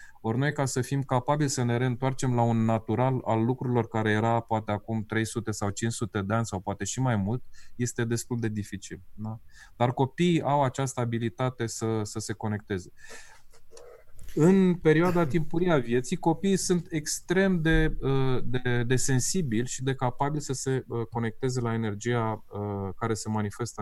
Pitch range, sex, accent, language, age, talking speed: 105-135 Hz, male, native, Romanian, 20-39, 165 wpm